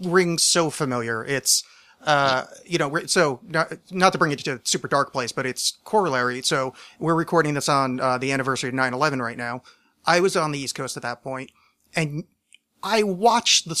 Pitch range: 130-165 Hz